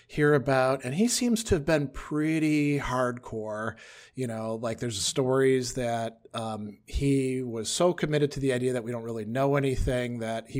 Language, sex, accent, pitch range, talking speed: English, male, American, 110-140 Hz, 180 wpm